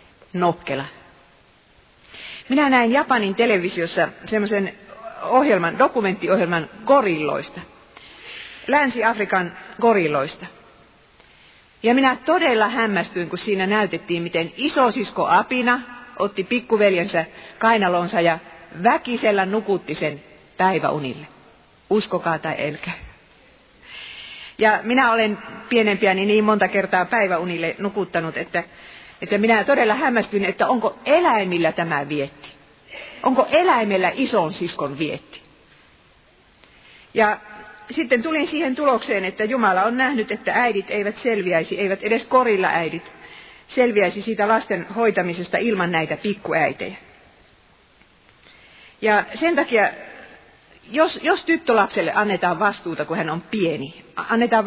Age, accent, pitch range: 40-59, native, 175-240 Hz